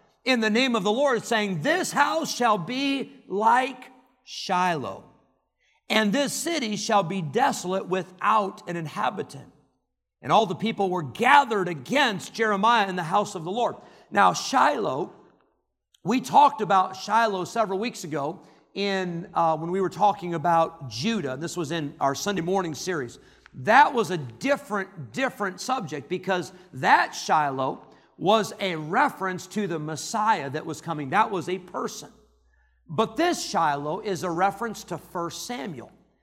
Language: English